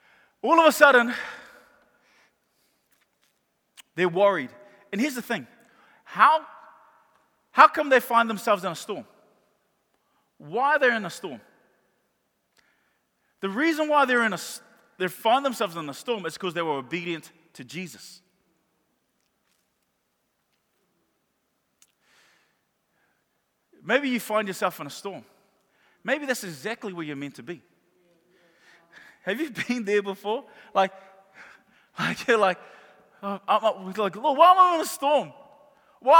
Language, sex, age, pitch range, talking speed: English, male, 30-49, 195-300 Hz, 130 wpm